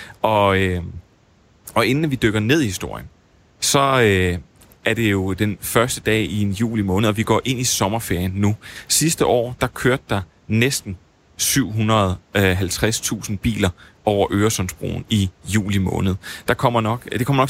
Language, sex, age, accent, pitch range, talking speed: Danish, male, 30-49, native, 95-115 Hz, 145 wpm